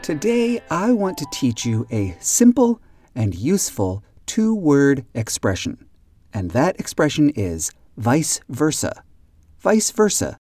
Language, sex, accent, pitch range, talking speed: English, male, American, 100-145 Hz, 115 wpm